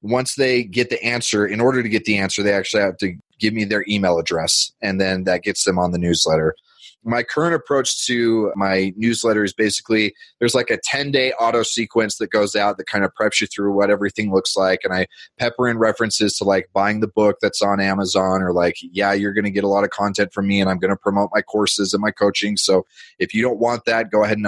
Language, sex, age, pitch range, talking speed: English, male, 20-39, 100-115 Hz, 245 wpm